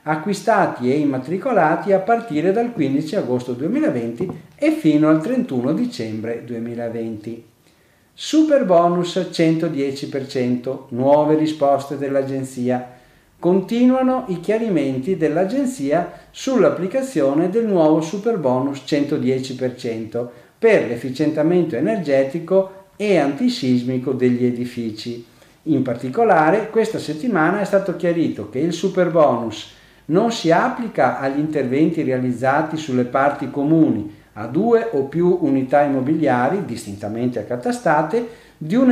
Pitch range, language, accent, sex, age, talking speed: 130-190 Hz, Italian, native, male, 50-69, 100 wpm